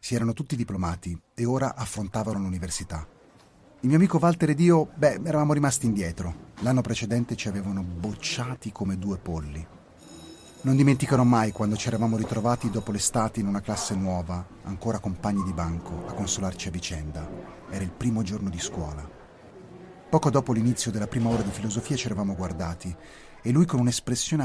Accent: native